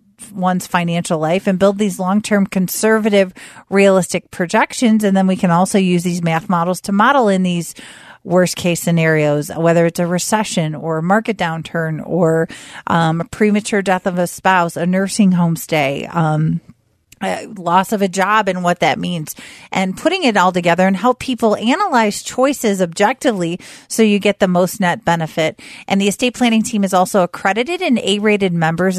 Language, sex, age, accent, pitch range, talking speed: English, female, 40-59, American, 170-215 Hz, 175 wpm